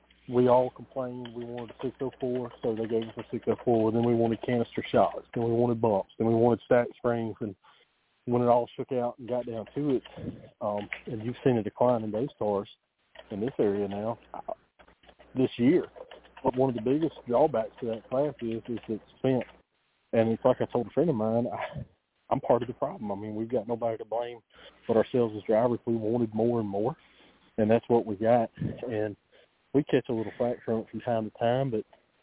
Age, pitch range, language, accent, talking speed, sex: 40-59, 110-125 Hz, English, American, 215 wpm, male